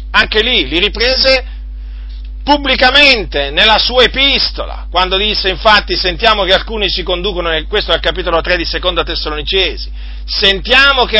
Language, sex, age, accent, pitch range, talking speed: Italian, male, 40-59, native, 155-215 Hz, 140 wpm